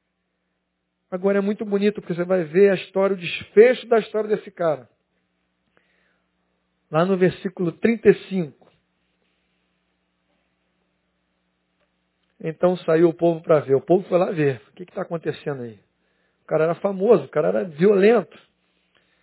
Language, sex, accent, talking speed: Portuguese, male, Brazilian, 140 wpm